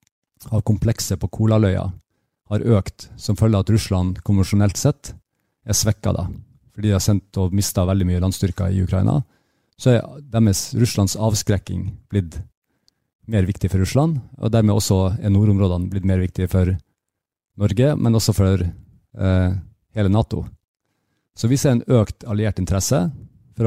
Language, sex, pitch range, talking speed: Danish, male, 95-110 Hz, 145 wpm